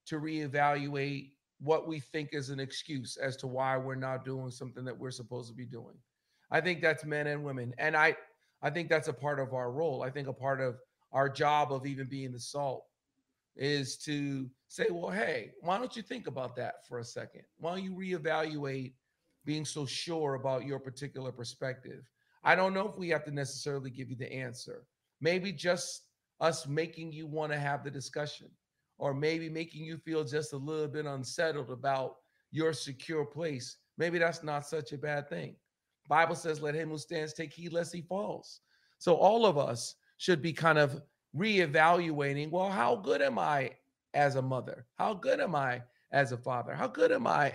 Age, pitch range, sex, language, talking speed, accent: 40-59, 135-160 Hz, male, English, 195 wpm, American